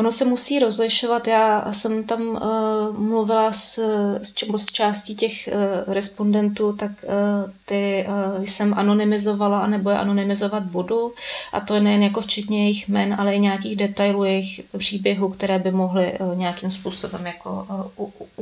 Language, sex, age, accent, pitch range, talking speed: Czech, female, 20-39, native, 200-220 Hz, 160 wpm